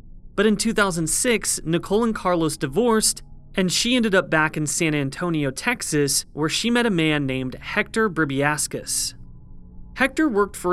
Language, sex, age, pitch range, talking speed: English, male, 30-49, 150-200 Hz, 150 wpm